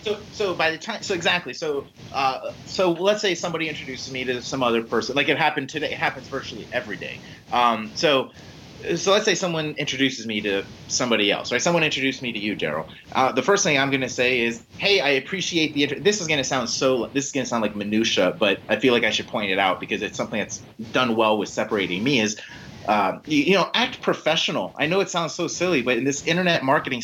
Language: English